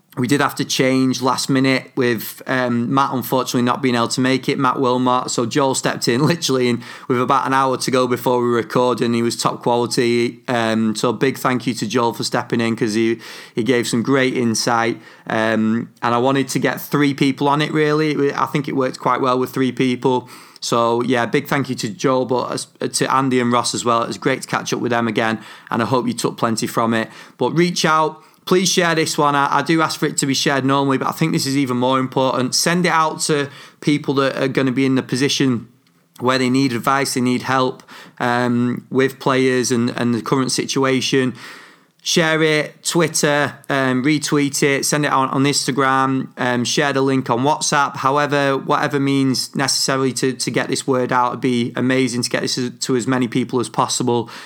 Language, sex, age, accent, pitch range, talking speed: English, male, 30-49, British, 125-140 Hz, 220 wpm